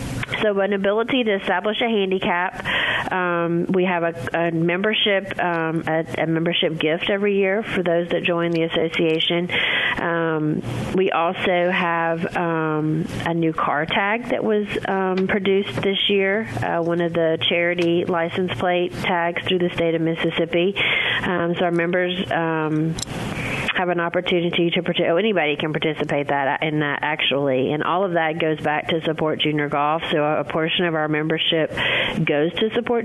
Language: English